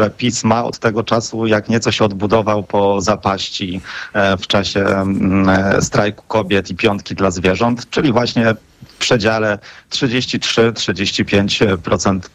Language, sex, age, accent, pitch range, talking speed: Polish, male, 30-49, native, 105-125 Hz, 110 wpm